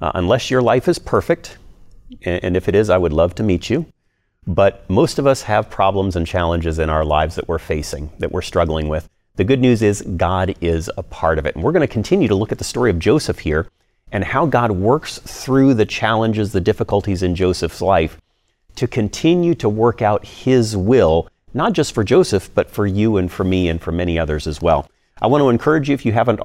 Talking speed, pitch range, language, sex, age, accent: 230 wpm, 90-115 Hz, English, male, 40-59, American